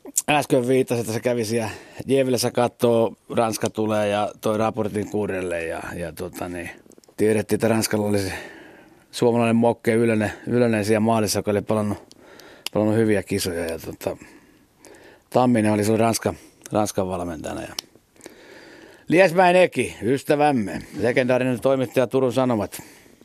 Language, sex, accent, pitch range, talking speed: Finnish, male, native, 110-130 Hz, 125 wpm